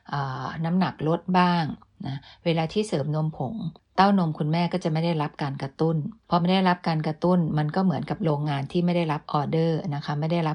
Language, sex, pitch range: Thai, female, 145-175 Hz